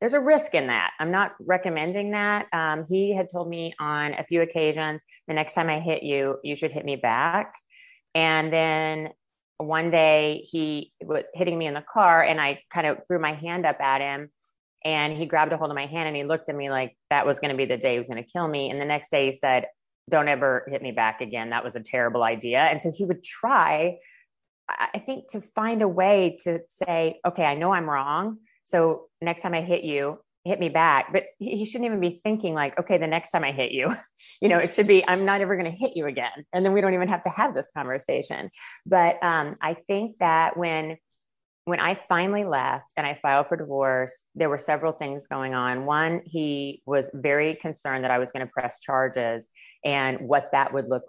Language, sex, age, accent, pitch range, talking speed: English, female, 30-49, American, 130-170 Hz, 230 wpm